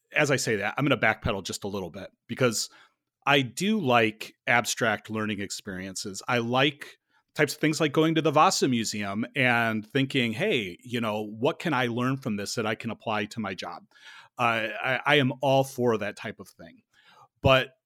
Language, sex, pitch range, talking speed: English, male, 110-140 Hz, 200 wpm